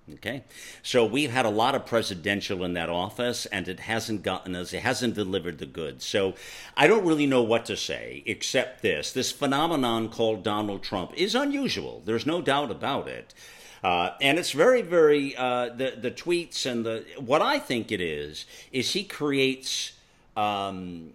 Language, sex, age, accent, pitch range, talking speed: English, male, 50-69, American, 95-130 Hz, 180 wpm